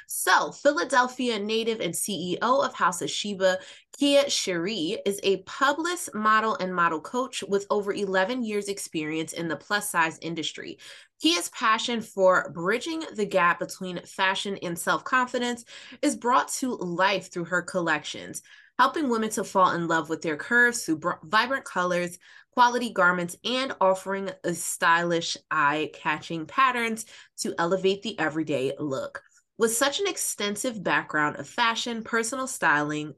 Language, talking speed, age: English, 145 wpm, 20-39